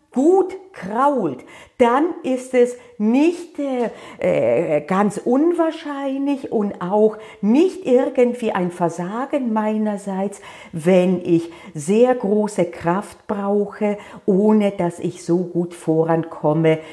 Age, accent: 50-69, German